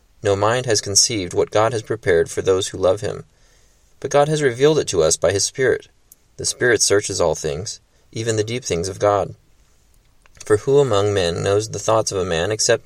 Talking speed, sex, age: 210 wpm, male, 30-49